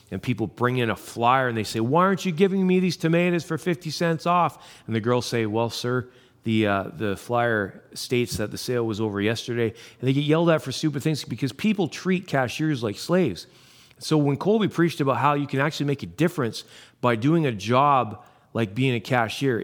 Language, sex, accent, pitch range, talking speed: English, male, American, 110-145 Hz, 215 wpm